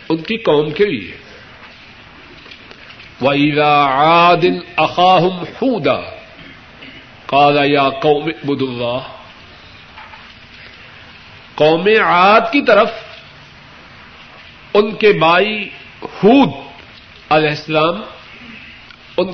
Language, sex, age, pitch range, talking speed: Urdu, male, 50-69, 145-200 Hz, 65 wpm